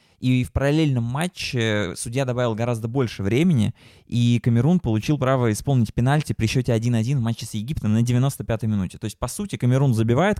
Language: Russian